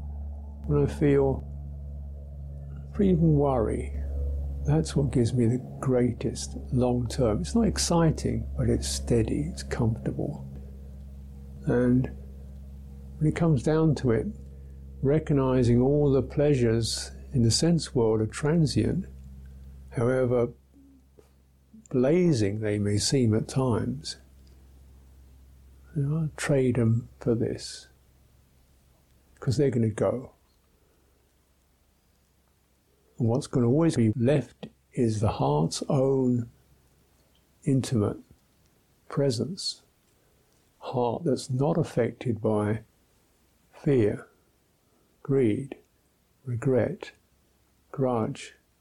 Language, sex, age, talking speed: English, male, 50-69, 90 wpm